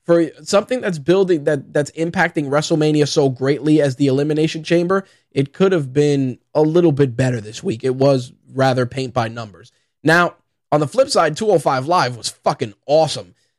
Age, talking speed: 20-39, 175 wpm